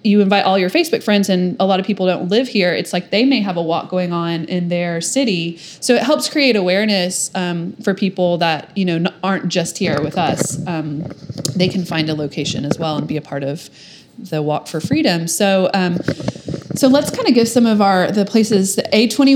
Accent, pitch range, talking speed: American, 165-195 Hz, 220 wpm